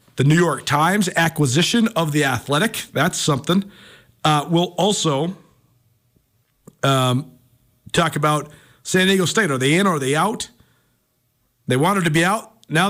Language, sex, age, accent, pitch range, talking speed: English, male, 40-59, American, 120-170 Hz, 150 wpm